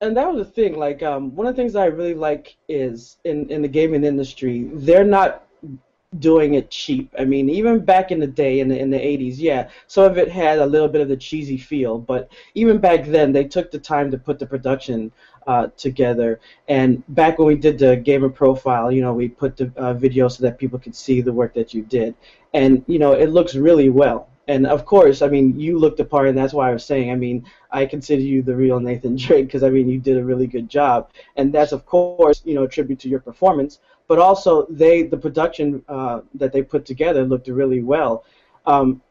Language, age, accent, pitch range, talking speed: English, 20-39, American, 130-150 Hz, 235 wpm